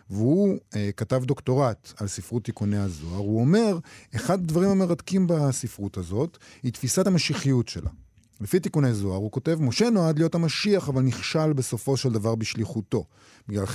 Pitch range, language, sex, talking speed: 105-155 Hz, Hebrew, male, 155 wpm